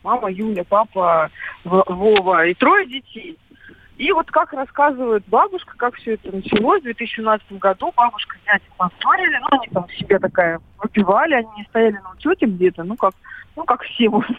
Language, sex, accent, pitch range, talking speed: Russian, female, native, 190-290 Hz, 170 wpm